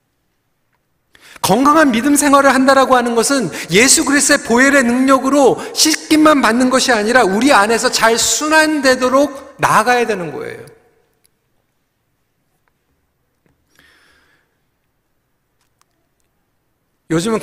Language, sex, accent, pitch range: Korean, male, native, 170-255 Hz